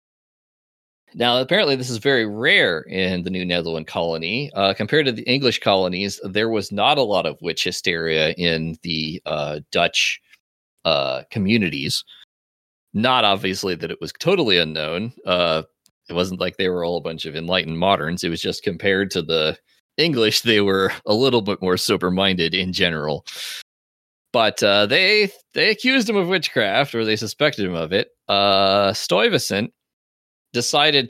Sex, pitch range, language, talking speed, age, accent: male, 85-115 Hz, English, 160 wpm, 30-49, American